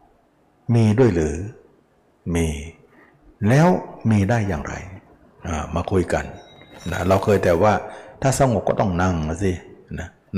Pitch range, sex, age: 90-115 Hz, male, 60-79